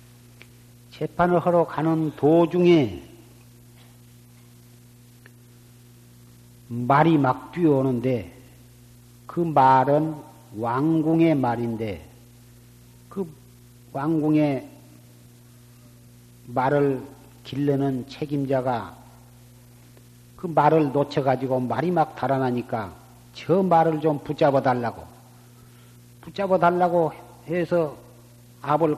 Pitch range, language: 120-155 Hz, Korean